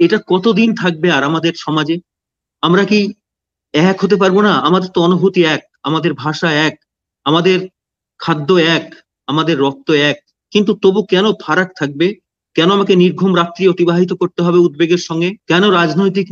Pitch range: 145-185 Hz